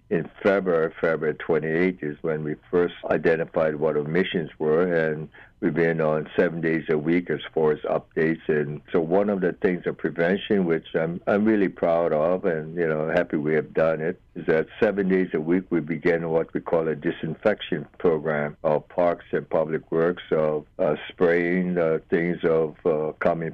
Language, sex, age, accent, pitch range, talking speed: English, male, 60-79, American, 80-85 Hz, 185 wpm